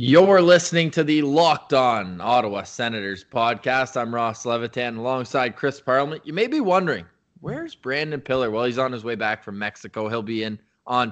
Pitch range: 120-150 Hz